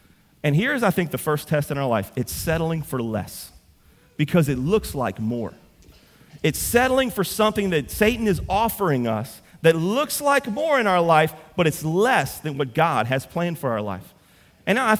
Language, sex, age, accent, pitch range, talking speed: English, male, 40-59, American, 125-190 Hz, 190 wpm